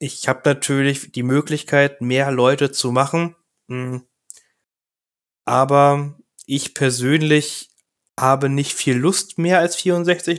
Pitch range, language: 115-140 Hz, German